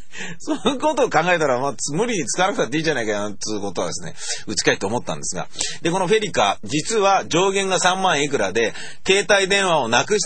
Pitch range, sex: 155-245 Hz, male